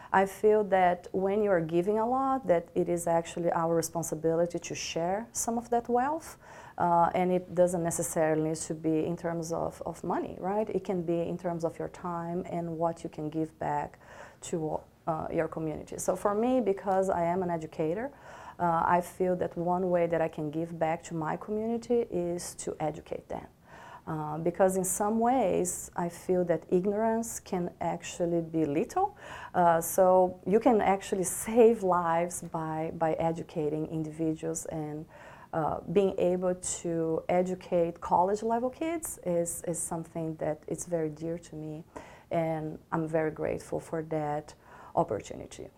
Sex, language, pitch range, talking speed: female, English, 165-195 Hz, 165 wpm